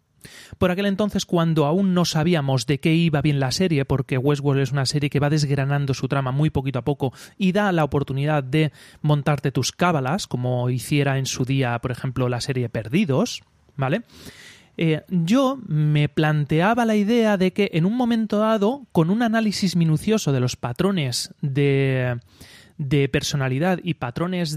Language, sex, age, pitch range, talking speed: Spanish, male, 30-49, 140-205 Hz, 170 wpm